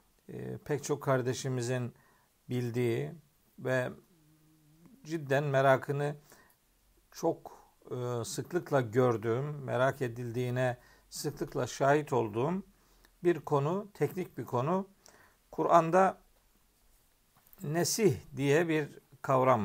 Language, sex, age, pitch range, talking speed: Turkish, male, 50-69, 130-175 Hz, 75 wpm